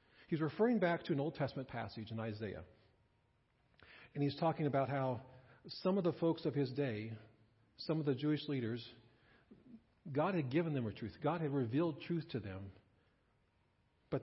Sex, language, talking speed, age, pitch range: male, English, 170 wpm, 50-69, 115-150 Hz